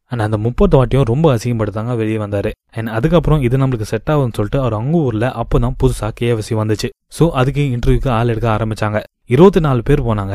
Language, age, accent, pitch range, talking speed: Tamil, 20-39, native, 110-140 Hz, 175 wpm